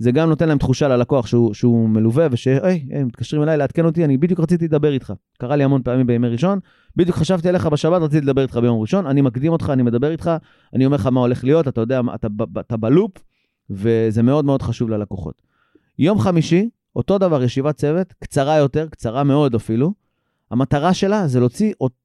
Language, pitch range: Hebrew, 125-165 Hz